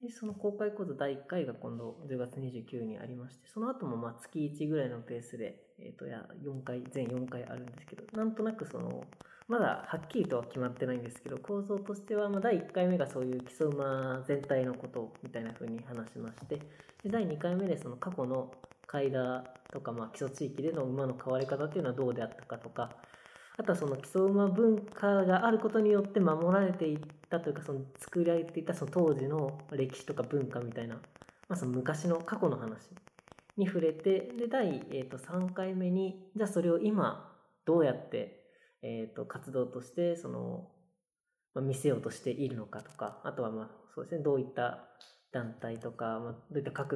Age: 20-39